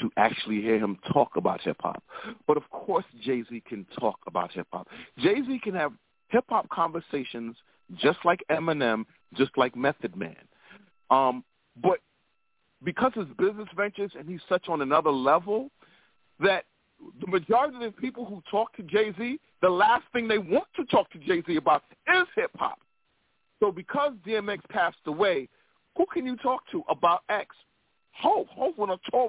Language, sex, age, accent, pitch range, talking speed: English, male, 40-59, American, 155-265 Hz, 160 wpm